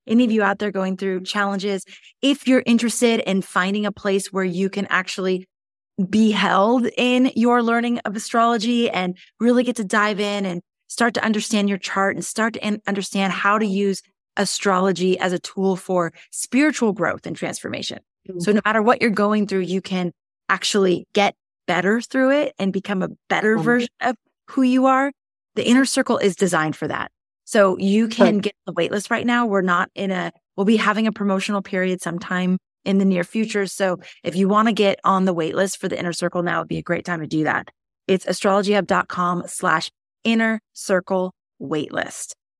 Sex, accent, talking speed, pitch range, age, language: female, American, 190 wpm, 185-230 Hz, 20-39, English